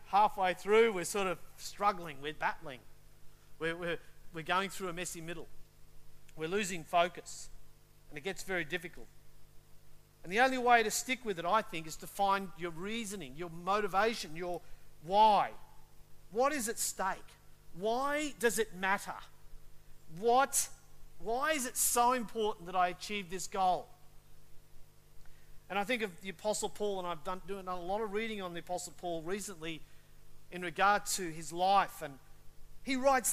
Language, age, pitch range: English, 50-69, 155-210 Hz